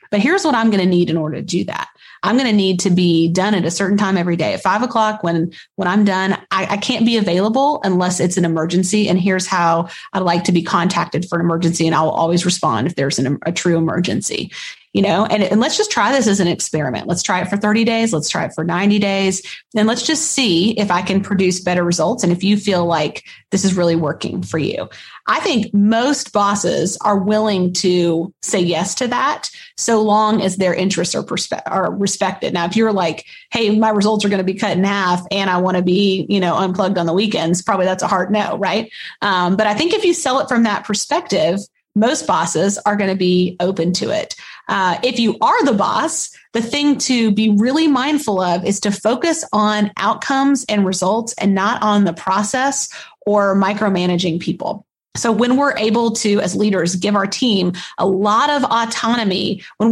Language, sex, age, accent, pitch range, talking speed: English, female, 30-49, American, 180-220 Hz, 220 wpm